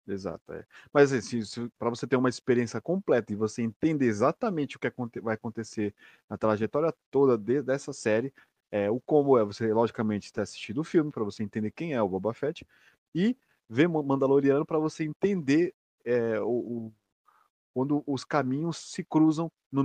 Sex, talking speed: male, 180 wpm